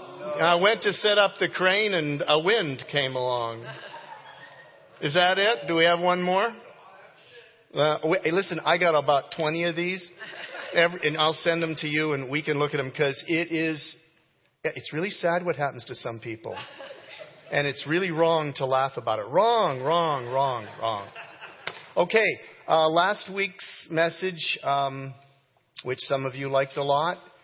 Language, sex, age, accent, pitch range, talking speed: English, male, 40-59, American, 135-170 Hz, 165 wpm